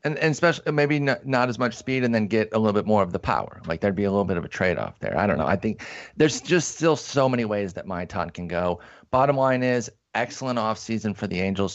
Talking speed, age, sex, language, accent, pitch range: 270 wpm, 30-49, male, English, American, 100-120 Hz